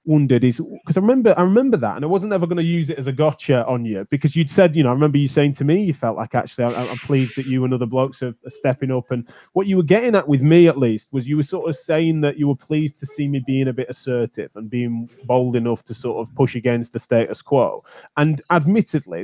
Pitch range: 125-165 Hz